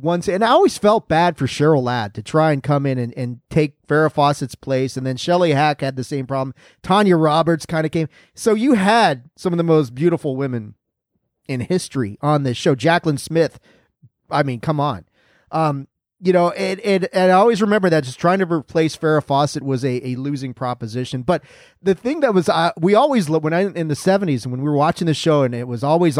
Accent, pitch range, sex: American, 135-175 Hz, male